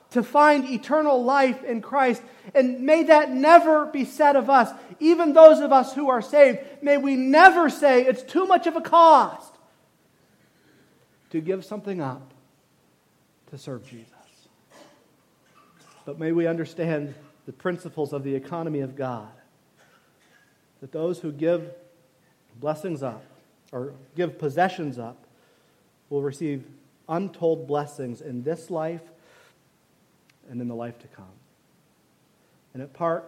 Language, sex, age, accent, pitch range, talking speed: English, male, 40-59, American, 140-220 Hz, 135 wpm